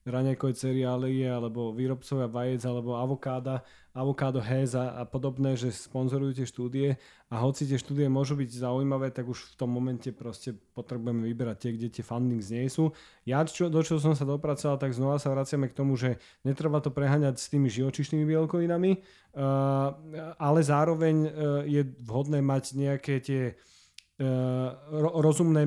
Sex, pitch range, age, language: male, 130-150 Hz, 30-49, Slovak